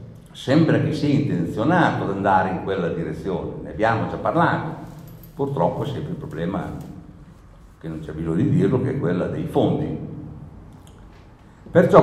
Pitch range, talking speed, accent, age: 95-135 Hz, 150 wpm, native, 60-79